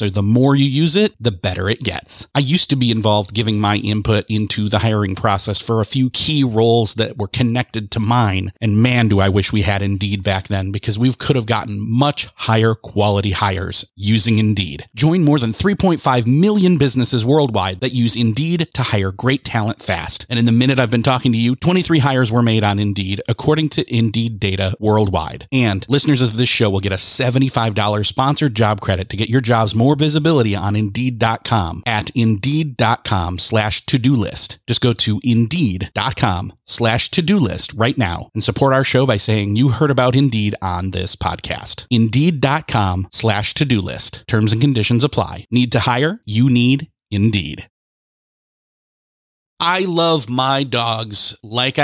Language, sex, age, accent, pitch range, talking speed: English, male, 30-49, American, 105-135 Hz, 180 wpm